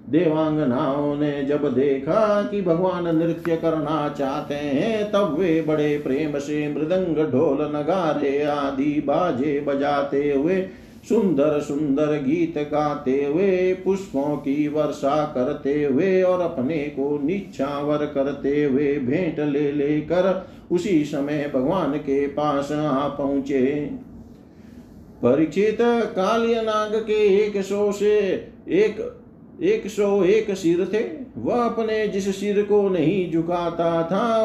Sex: male